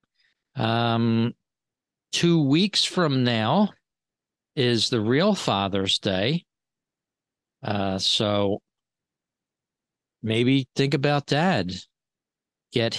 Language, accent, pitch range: English, American, 100-135 Hz